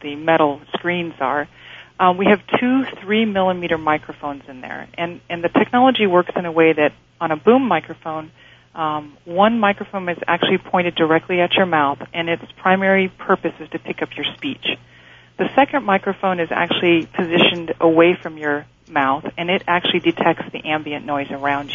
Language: English